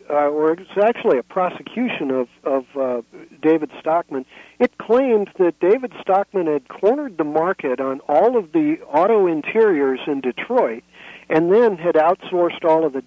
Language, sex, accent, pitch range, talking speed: English, male, American, 155-215 Hz, 160 wpm